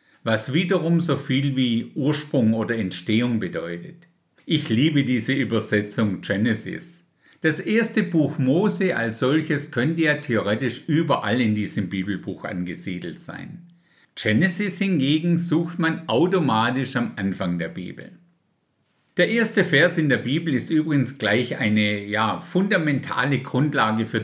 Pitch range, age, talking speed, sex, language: 110-165 Hz, 50-69, 125 wpm, male, German